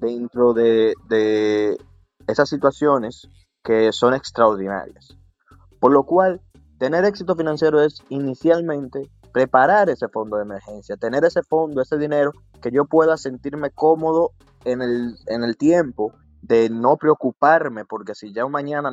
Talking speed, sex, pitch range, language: 135 wpm, male, 110-150 Hz, Spanish